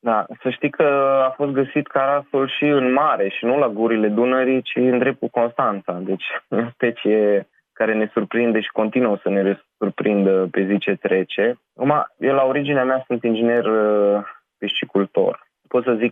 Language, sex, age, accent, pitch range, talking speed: Romanian, male, 20-39, native, 100-125 Hz, 175 wpm